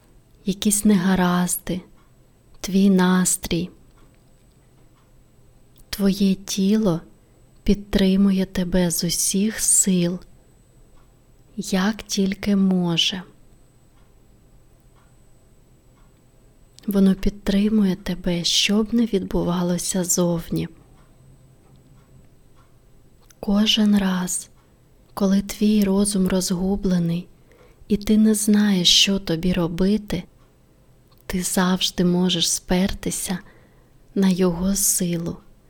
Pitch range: 170-200 Hz